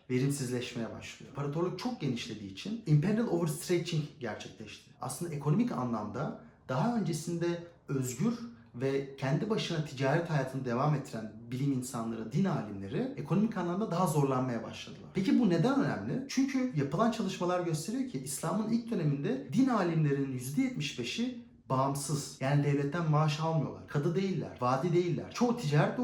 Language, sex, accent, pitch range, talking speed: Turkish, male, native, 130-185 Hz, 130 wpm